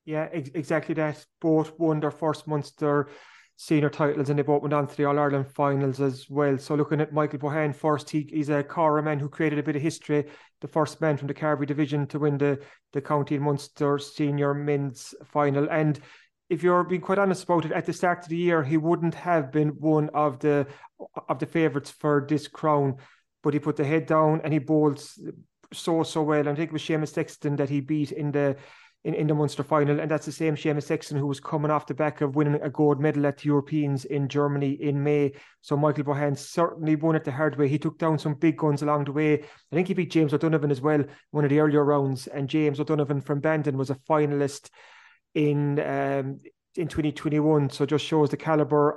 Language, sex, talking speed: English, male, 225 wpm